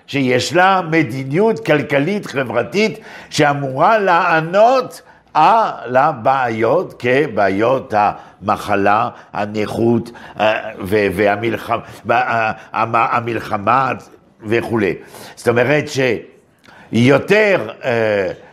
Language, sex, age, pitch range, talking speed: Hebrew, male, 60-79, 135-195 Hz, 60 wpm